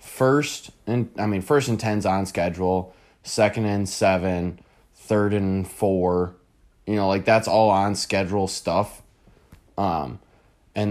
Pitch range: 95-110 Hz